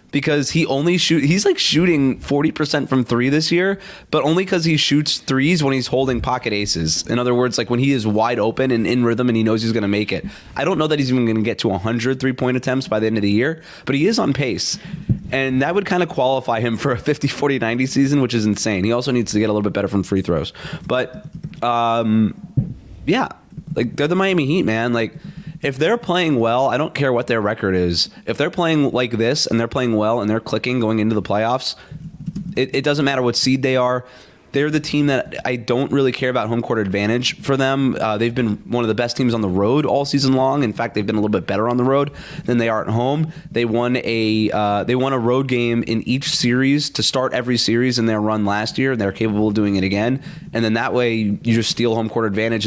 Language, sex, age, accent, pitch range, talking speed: English, male, 20-39, American, 110-140 Hz, 250 wpm